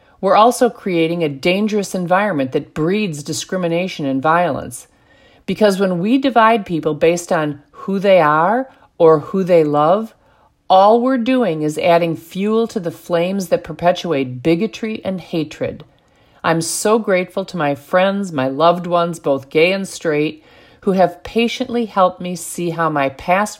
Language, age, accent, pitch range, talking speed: English, 40-59, American, 155-195 Hz, 155 wpm